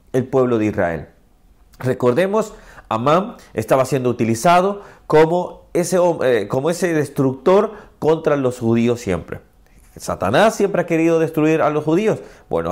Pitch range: 125-185 Hz